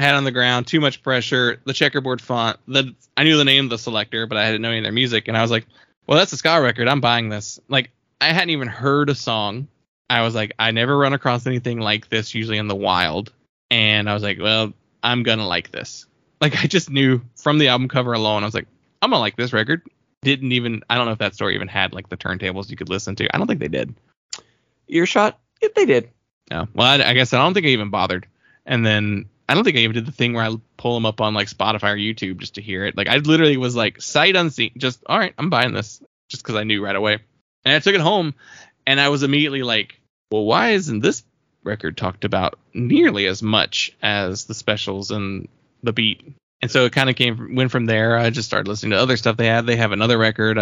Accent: American